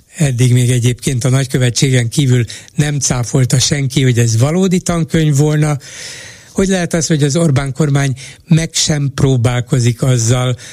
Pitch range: 120-150 Hz